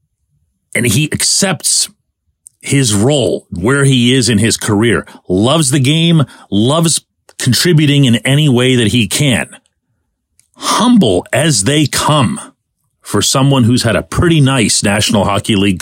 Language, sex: English, male